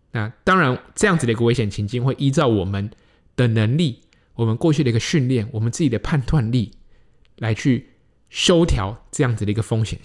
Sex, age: male, 20-39